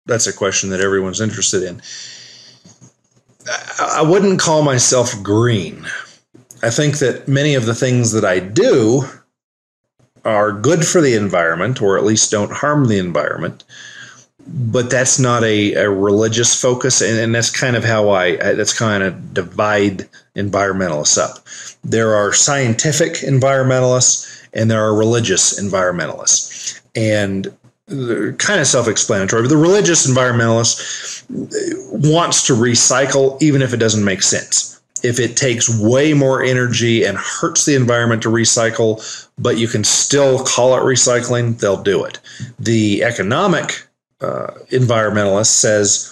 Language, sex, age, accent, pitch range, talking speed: English, male, 40-59, American, 110-130 Hz, 140 wpm